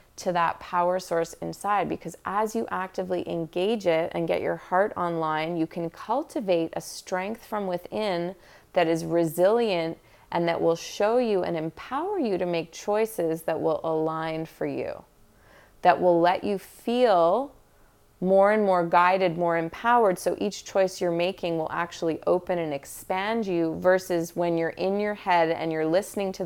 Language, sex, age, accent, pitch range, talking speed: English, female, 30-49, American, 165-195 Hz, 170 wpm